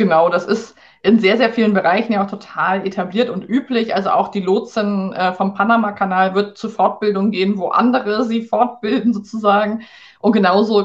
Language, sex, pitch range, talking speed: German, female, 195-220 Hz, 170 wpm